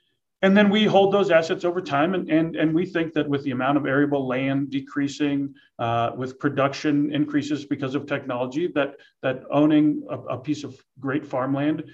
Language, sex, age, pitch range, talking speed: English, male, 40-59, 130-160 Hz, 185 wpm